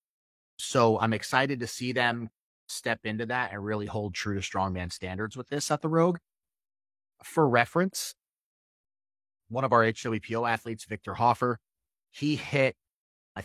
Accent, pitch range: American, 100-125 Hz